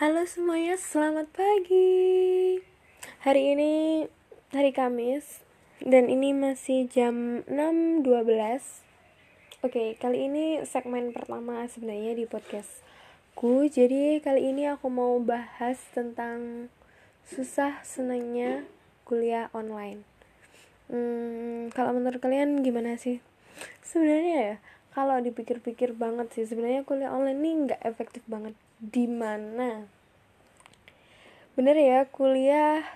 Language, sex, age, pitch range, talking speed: Indonesian, female, 10-29, 235-275 Hz, 100 wpm